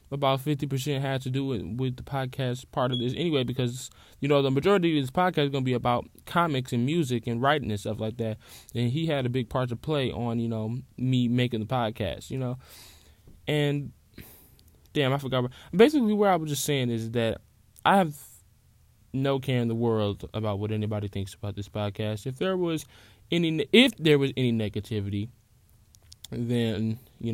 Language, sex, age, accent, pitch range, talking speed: English, male, 10-29, American, 110-145 Hz, 195 wpm